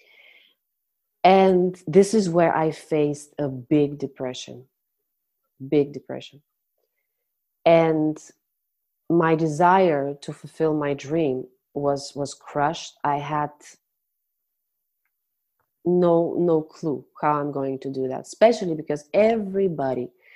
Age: 30-49